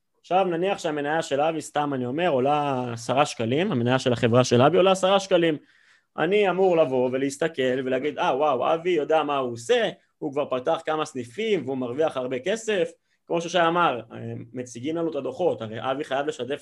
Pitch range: 135-175 Hz